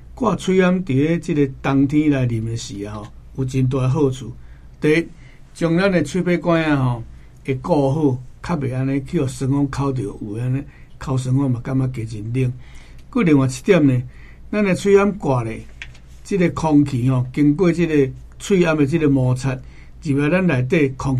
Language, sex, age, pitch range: Chinese, male, 60-79, 120-145 Hz